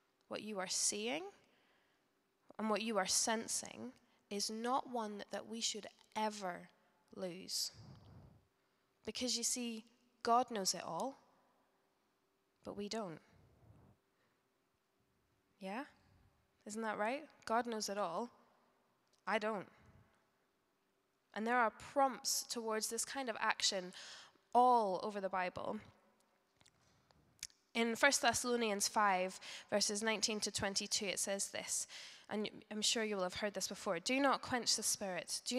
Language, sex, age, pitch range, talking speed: English, female, 10-29, 200-240 Hz, 130 wpm